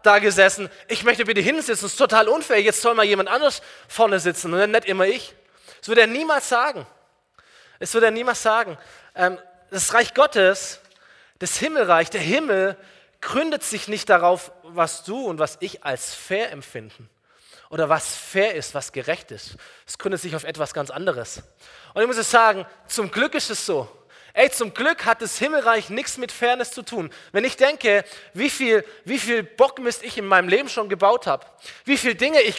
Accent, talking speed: German, 195 wpm